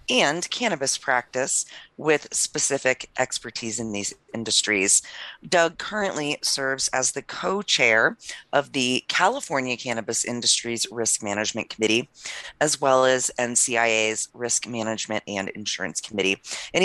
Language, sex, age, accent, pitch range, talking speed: English, female, 30-49, American, 120-150 Hz, 120 wpm